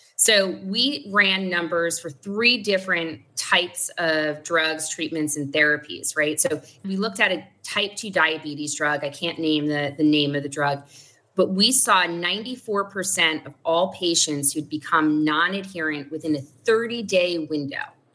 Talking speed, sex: 150 wpm, female